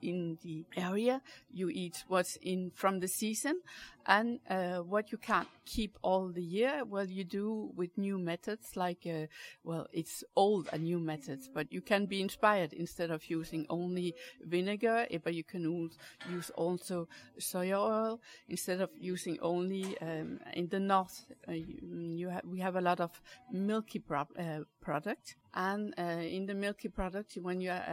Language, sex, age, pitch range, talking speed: English, female, 60-79, 170-210 Hz, 170 wpm